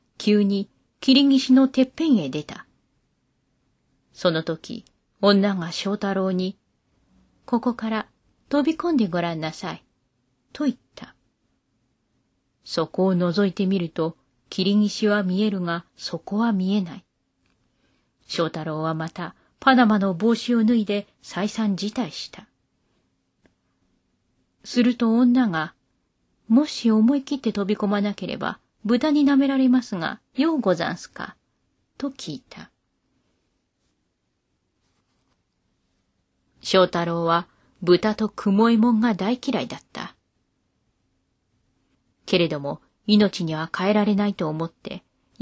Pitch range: 175-240 Hz